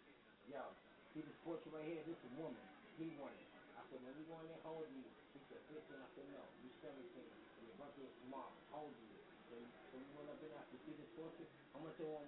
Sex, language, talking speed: male, English, 260 wpm